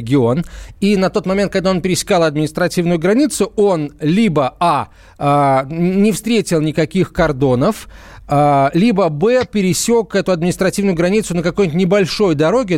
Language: Russian